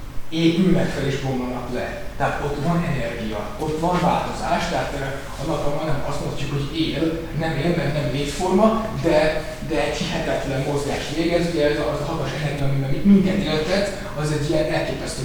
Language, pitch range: Hungarian, 135-170 Hz